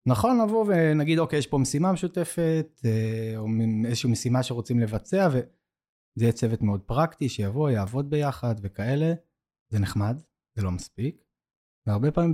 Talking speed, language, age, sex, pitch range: 140 wpm, Hebrew, 20-39, male, 110-150 Hz